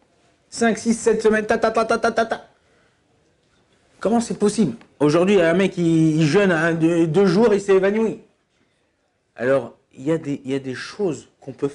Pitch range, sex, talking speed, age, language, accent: 120-165 Hz, male, 210 wpm, 50-69, French, French